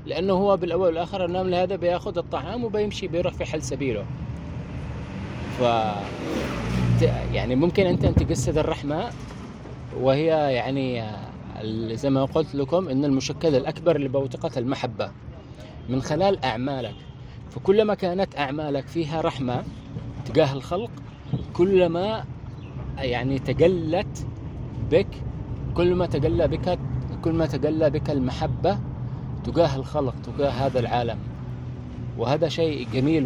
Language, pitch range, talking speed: English, 125-155 Hz, 105 wpm